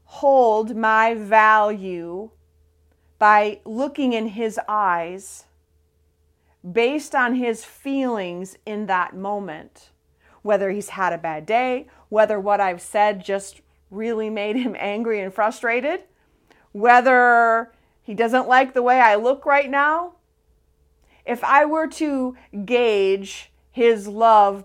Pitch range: 180-230 Hz